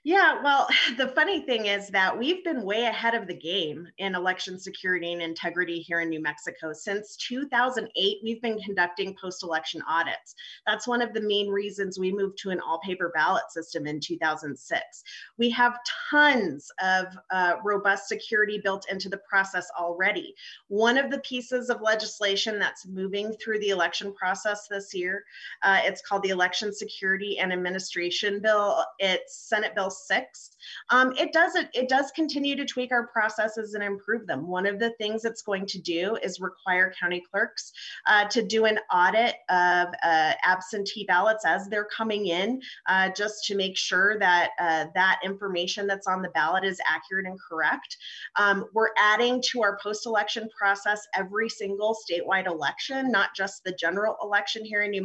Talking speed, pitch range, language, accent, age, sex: 170 wpm, 185-225 Hz, English, American, 30-49, female